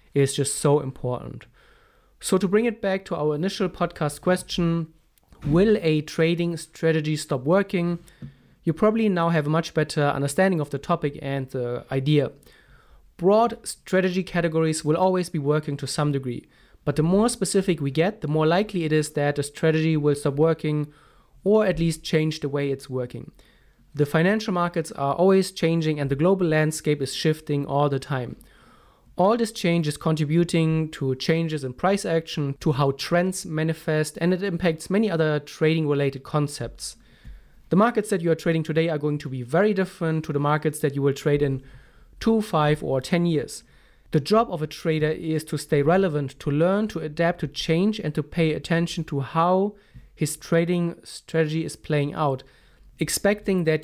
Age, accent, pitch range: 30-49, German, 145-175 Hz